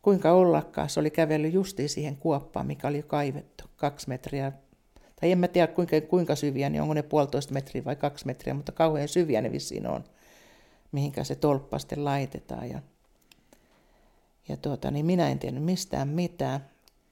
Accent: native